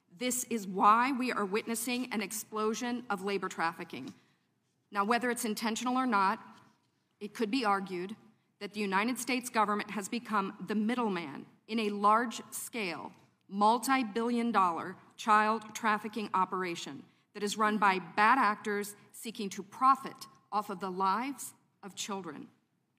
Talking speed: 135 wpm